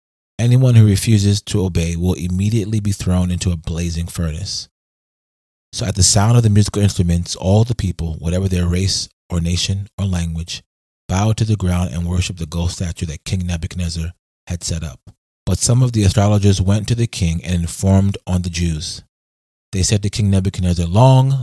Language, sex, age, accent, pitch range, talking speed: English, male, 30-49, American, 85-105 Hz, 185 wpm